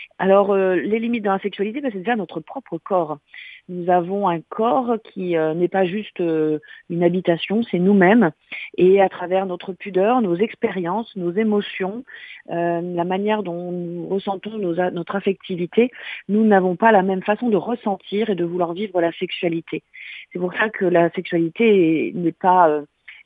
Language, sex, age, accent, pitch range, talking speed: French, female, 40-59, French, 175-215 Hz, 175 wpm